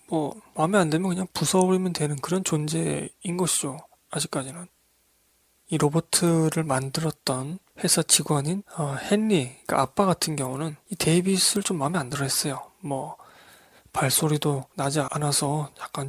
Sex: male